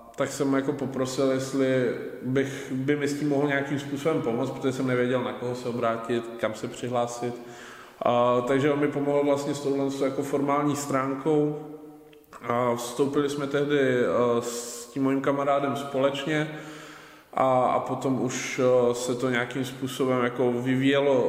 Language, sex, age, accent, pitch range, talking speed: Czech, male, 20-39, native, 125-135 Hz, 140 wpm